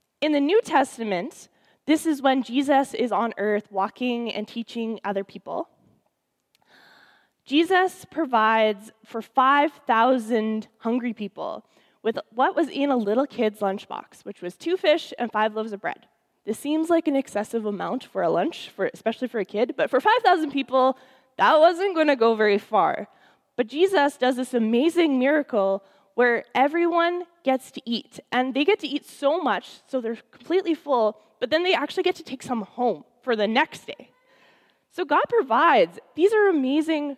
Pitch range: 220-300 Hz